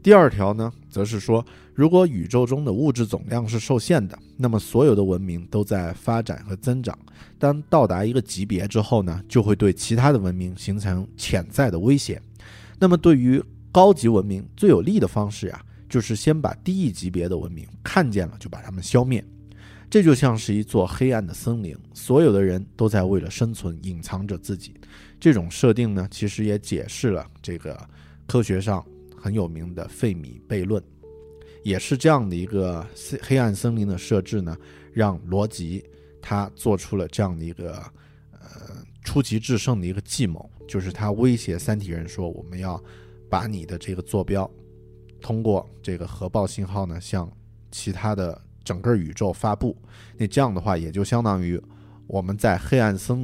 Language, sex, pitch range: Chinese, male, 90-115 Hz